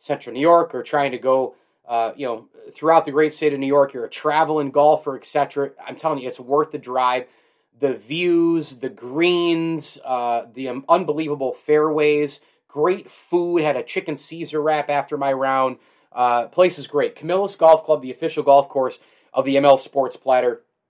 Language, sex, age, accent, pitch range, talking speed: English, male, 30-49, American, 130-165 Hz, 185 wpm